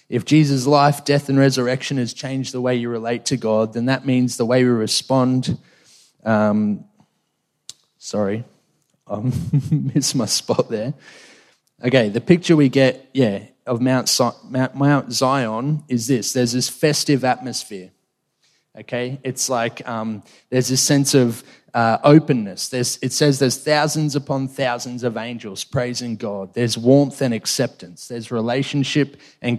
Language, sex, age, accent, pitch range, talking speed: English, male, 20-39, Australian, 120-140 Hz, 145 wpm